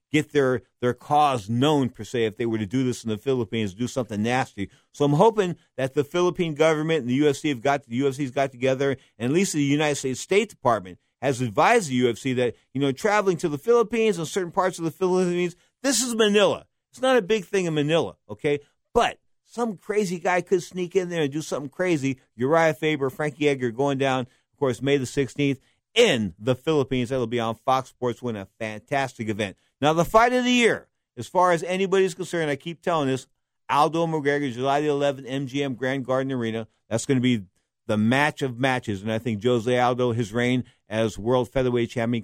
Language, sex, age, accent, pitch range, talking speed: English, male, 50-69, American, 120-160 Hz, 215 wpm